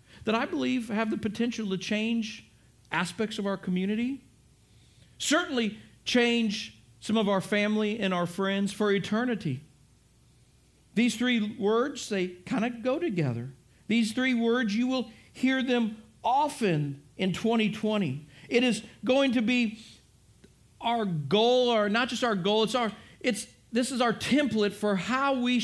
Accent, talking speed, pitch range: American, 145 wpm, 195-240 Hz